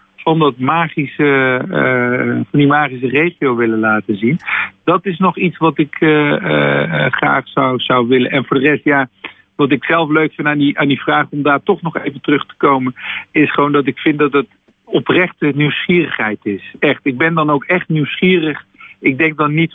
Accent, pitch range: Dutch, 125-150 Hz